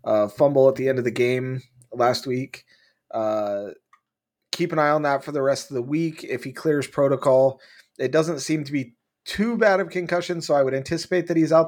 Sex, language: male, English